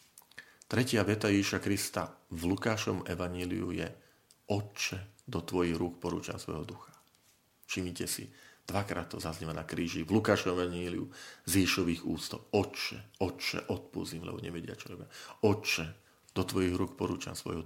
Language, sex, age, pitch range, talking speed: Slovak, male, 40-59, 95-125 Hz, 135 wpm